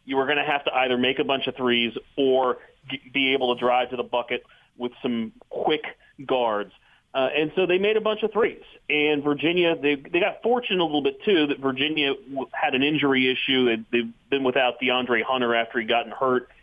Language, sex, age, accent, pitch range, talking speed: English, male, 30-49, American, 125-150 Hz, 210 wpm